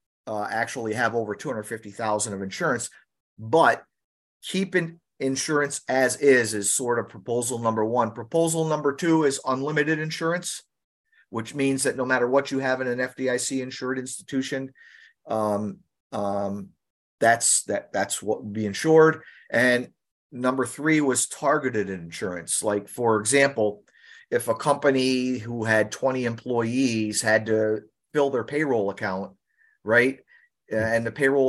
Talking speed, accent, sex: 135 wpm, American, male